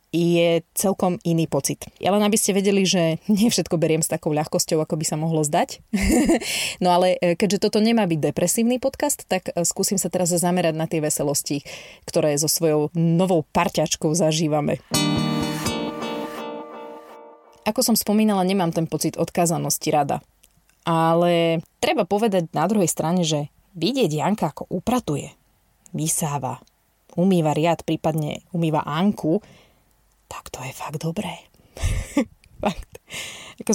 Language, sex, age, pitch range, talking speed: Slovak, female, 20-39, 160-200 Hz, 130 wpm